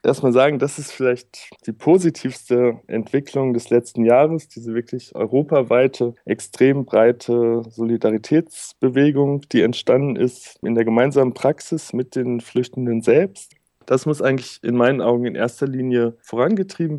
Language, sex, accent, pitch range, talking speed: German, male, German, 115-135 Hz, 135 wpm